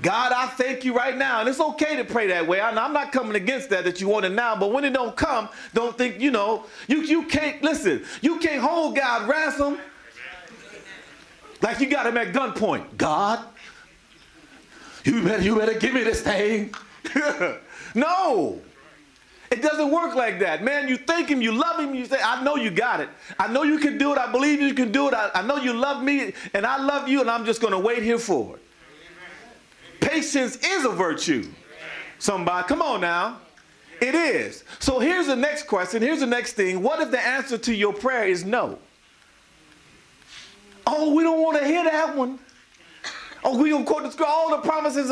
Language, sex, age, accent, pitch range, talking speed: English, male, 40-59, American, 230-295 Hz, 200 wpm